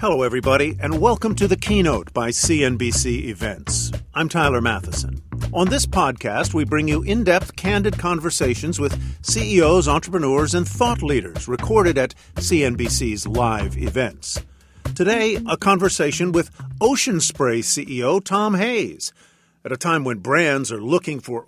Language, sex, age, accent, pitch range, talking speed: English, male, 50-69, American, 125-190 Hz, 140 wpm